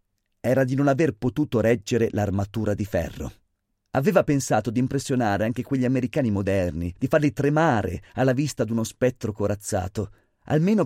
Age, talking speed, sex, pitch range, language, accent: 30-49, 145 wpm, male, 100-140 Hz, Italian, native